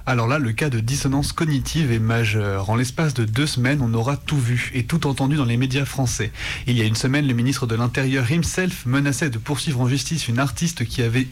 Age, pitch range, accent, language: 30-49, 120-140 Hz, French, French